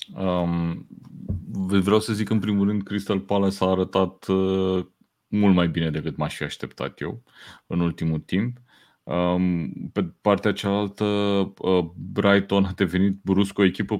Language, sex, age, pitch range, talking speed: Romanian, male, 30-49, 90-105 Hz, 145 wpm